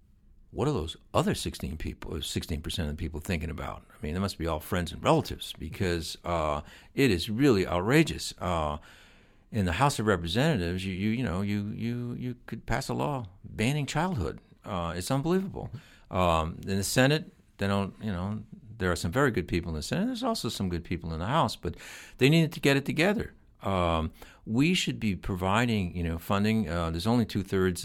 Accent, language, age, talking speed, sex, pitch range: American, English, 60-79, 205 wpm, male, 85-110 Hz